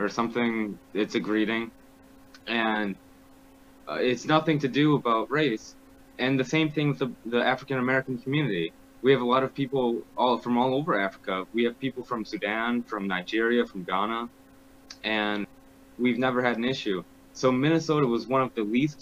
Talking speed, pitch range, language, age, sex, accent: 175 wpm, 110-135 Hz, English, 20-39, male, American